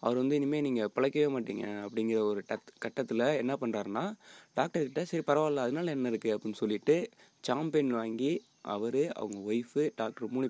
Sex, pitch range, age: male, 115-145 Hz, 20-39